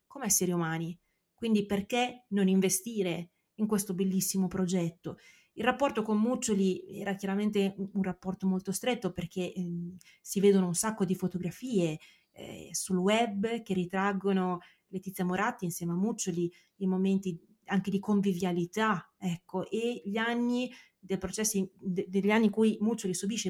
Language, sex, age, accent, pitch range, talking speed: Italian, female, 30-49, native, 185-215 Hz, 140 wpm